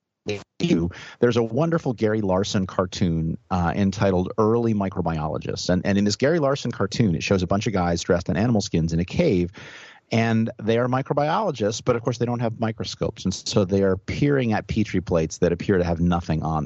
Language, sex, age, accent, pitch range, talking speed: English, male, 30-49, American, 90-115 Hz, 200 wpm